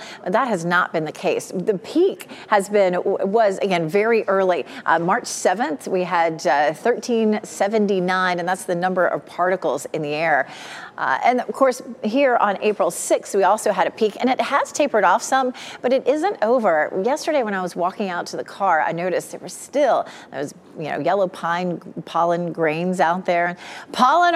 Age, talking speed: 30-49, 190 wpm